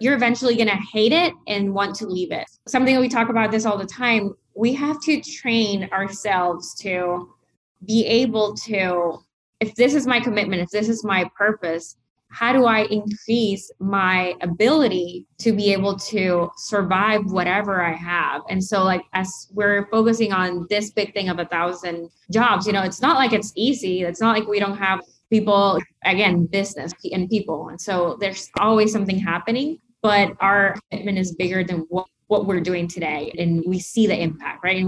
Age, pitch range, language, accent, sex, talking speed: 20-39, 185-225 Hz, English, American, female, 190 wpm